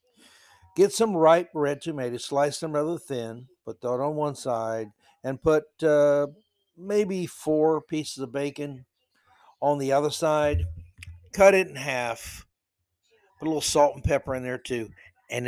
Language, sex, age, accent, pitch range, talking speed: English, male, 60-79, American, 115-160 Hz, 155 wpm